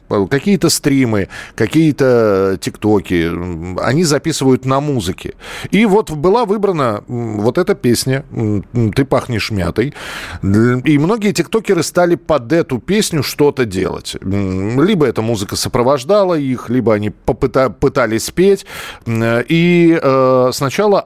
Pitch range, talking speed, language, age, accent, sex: 105-145 Hz, 110 wpm, Russian, 40-59, native, male